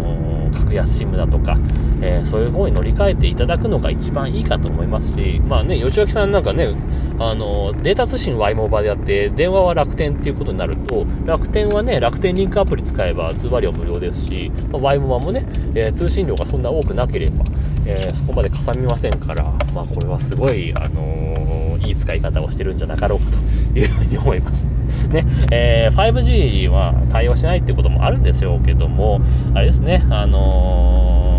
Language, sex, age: Japanese, male, 30-49